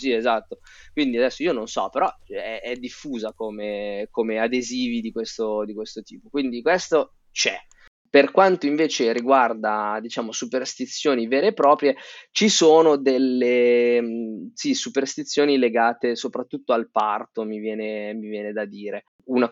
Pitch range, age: 115-145 Hz, 20-39